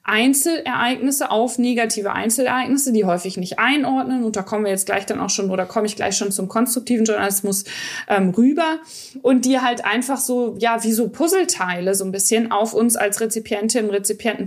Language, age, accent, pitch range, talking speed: German, 20-39, German, 205-250 Hz, 185 wpm